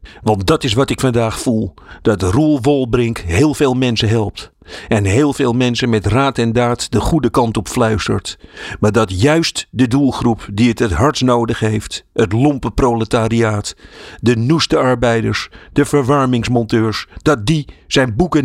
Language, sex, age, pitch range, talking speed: Dutch, male, 50-69, 110-135 Hz, 165 wpm